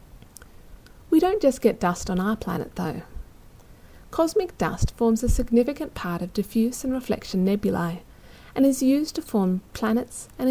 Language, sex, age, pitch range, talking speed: English, female, 40-59, 175-255 Hz, 155 wpm